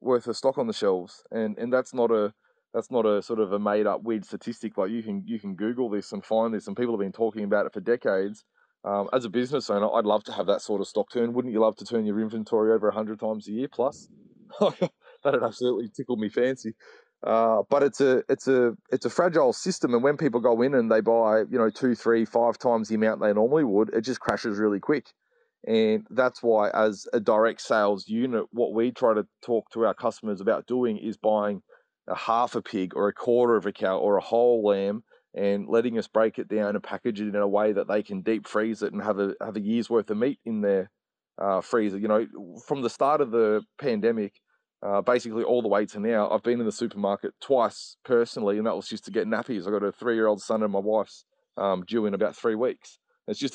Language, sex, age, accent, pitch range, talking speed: English, male, 20-39, Australian, 105-120 Hz, 250 wpm